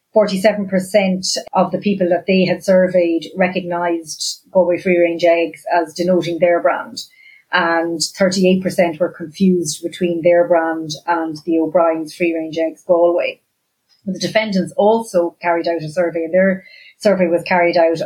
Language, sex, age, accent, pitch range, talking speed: English, female, 30-49, Irish, 170-190 Hz, 145 wpm